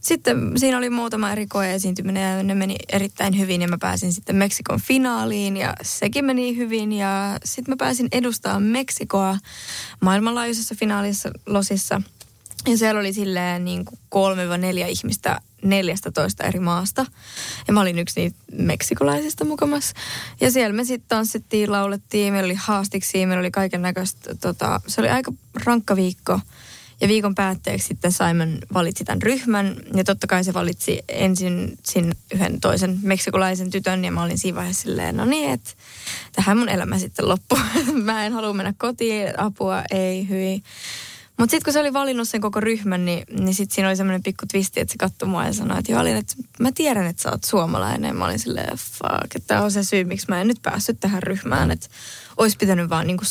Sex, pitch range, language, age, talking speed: female, 180-220 Hz, Finnish, 20-39, 180 wpm